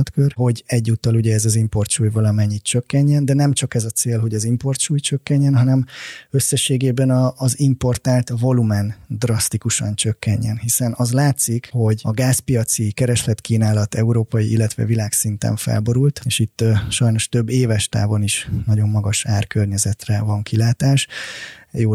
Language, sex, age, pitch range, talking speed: Hungarian, male, 20-39, 105-120 Hz, 140 wpm